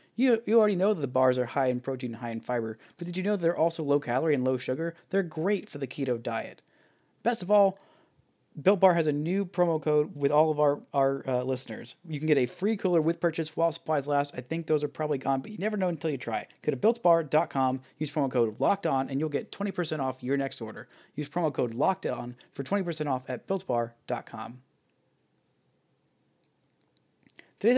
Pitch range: 135-185 Hz